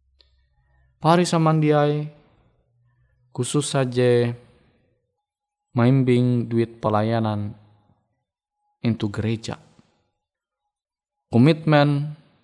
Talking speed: 50 wpm